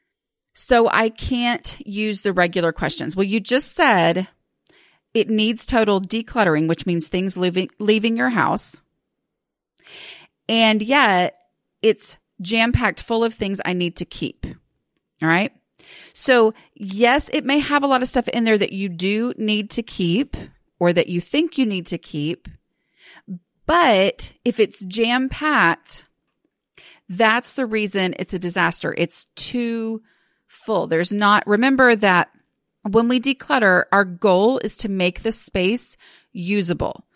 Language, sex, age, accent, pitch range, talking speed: English, female, 30-49, American, 185-245 Hz, 145 wpm